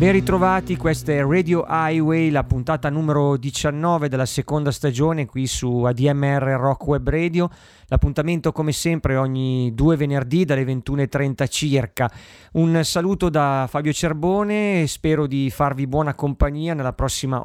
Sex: male